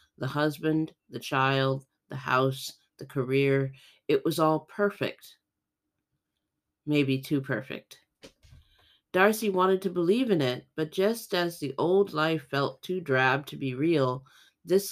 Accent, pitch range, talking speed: American, 135-175 Hz, 135 wpm